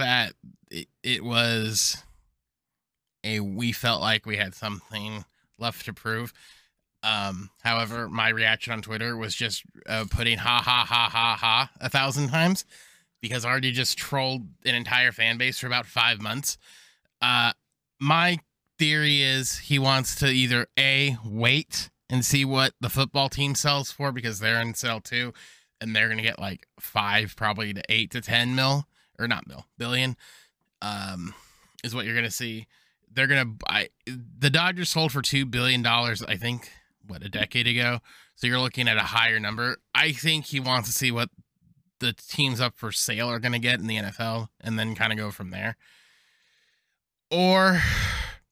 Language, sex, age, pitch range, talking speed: English, male, 20-39, 110-135 Hz, 170 wpm